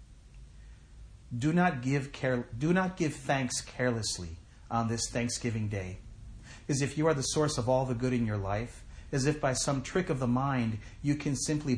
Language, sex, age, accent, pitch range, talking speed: English, male, 40-59, American, 105-135 Hz, 190 wpm